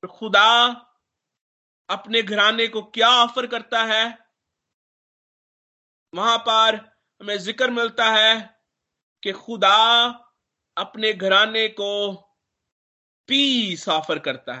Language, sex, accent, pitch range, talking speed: Hindi, male, native, 175-220 Hz, 90 wpm